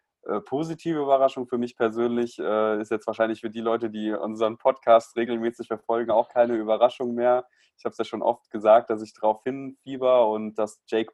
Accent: German